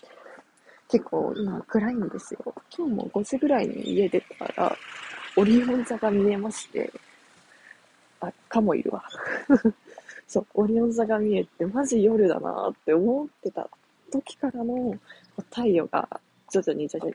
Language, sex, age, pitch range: Japanese, female, 20-39, 205-270 Hz